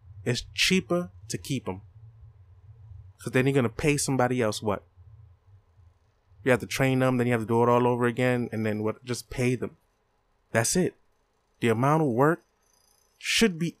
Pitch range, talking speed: 105-135 Hz, 185 wpm